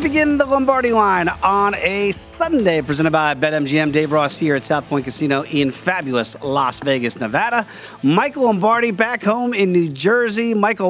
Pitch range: 135-175 Hz